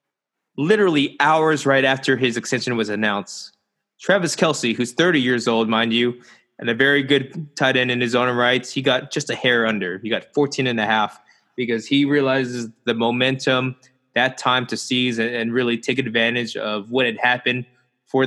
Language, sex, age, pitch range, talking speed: English, male, 20-39, 115-140 Hz, 185 wpm